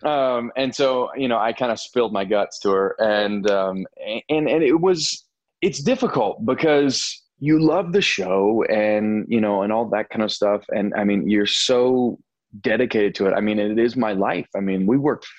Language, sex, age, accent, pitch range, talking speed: English, male, 20-39, American, 100-125 Hz, 205 wpm